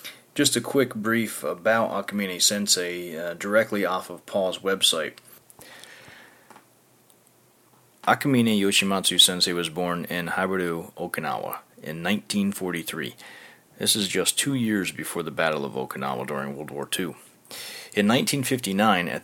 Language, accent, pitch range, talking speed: English, American, 85-100 Hz, 115 wpm